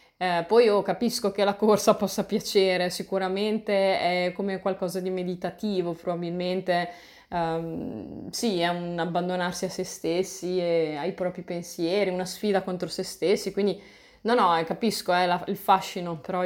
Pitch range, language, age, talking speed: 175-205 Hz, Italian, 20-39, 155 wpm